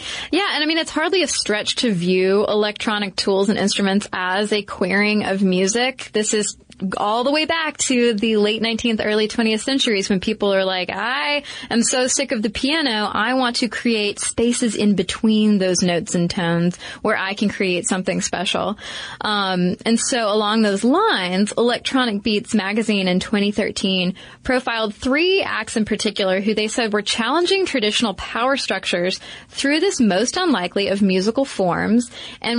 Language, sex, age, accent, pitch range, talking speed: English, female, 20-39, American, 200-255 Hz, 170 wpm